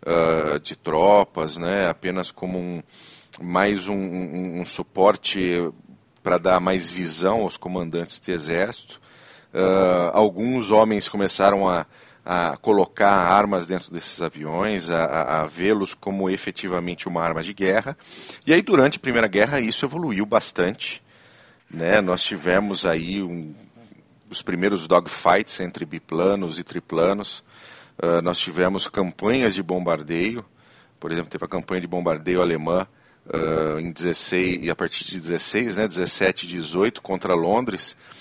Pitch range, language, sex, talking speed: 85-100 Hz, Portuguese, male, 140 wpm